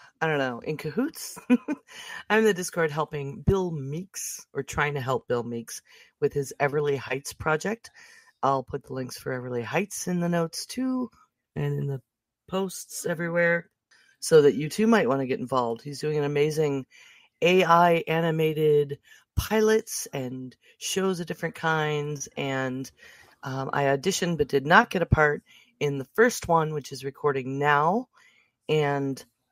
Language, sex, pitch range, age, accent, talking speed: English, female, 135-190 Hz, 40-59, American, 160 wpm